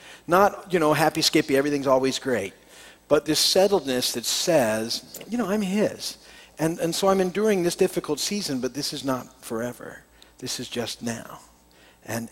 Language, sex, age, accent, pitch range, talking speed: English, male, 50-69, American, 130-205 Hz, 170 wpm